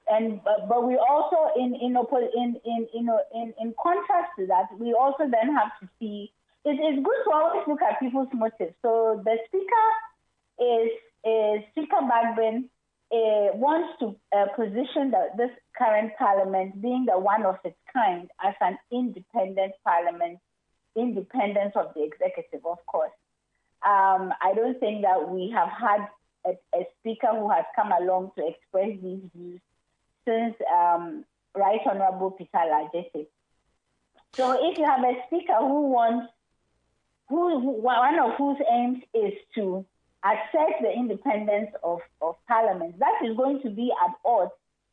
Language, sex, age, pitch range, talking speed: English, female, 30-49, 190-255 Hz, 150 wpm